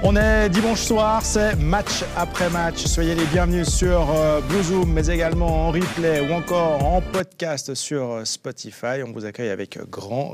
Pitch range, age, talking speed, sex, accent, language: 120-180 Hz, 40-59, 165 wpm, male, French, French